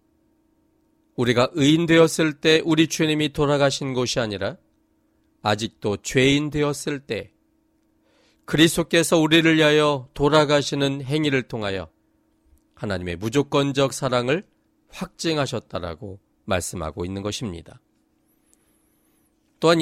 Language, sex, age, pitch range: Korean, male, 40-59, 120-175 Hz